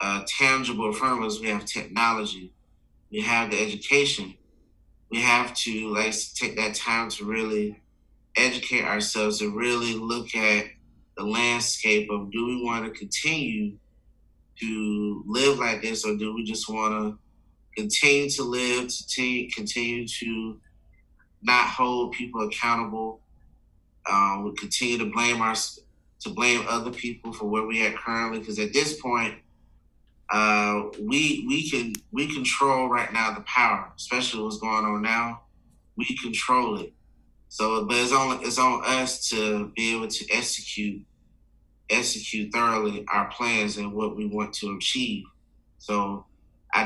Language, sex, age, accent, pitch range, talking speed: English, male, 30-49, American, 105-120 Hz, 145 wpm